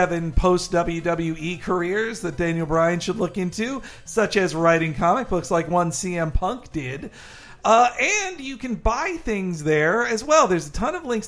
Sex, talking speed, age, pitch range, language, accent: male, 175 wpm, 50-69, 165-225 Hz, English, American